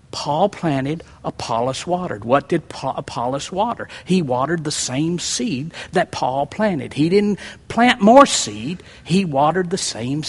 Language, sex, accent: English, male, American